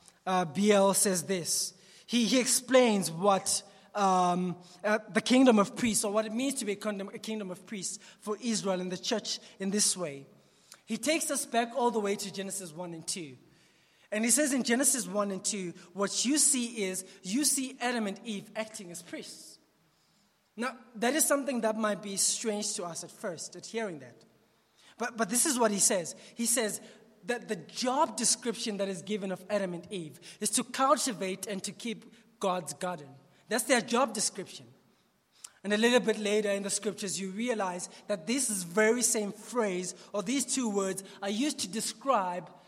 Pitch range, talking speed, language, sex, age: 190-235 Hz, 190 wpm, English, male, 20-39